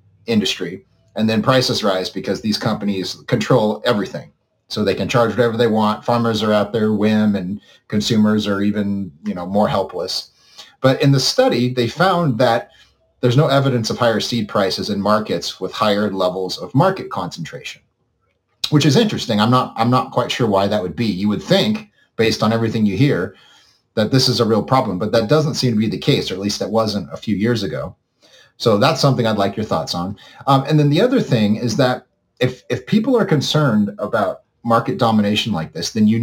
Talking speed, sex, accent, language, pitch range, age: 205 wpm, male, American, English, 105-125 Hz, 40-59